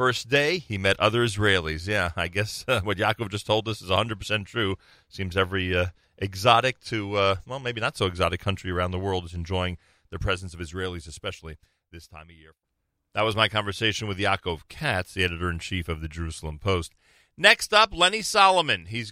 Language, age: English, 40-59